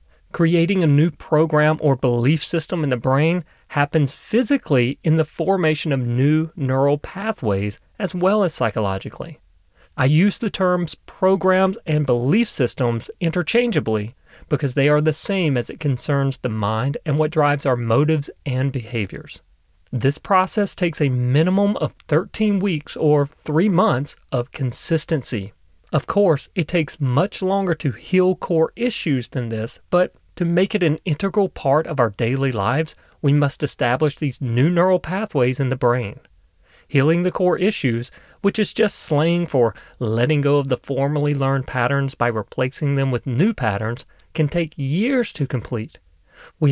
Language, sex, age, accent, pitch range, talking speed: English, male, 40-59, American, 130-175 Hz, 160 wpm